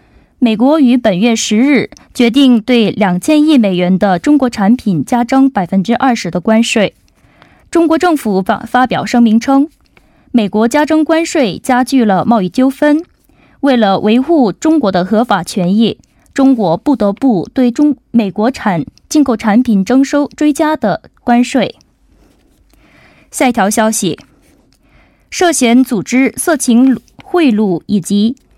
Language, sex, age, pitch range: Korean, female, 20-39, 210-275 Hz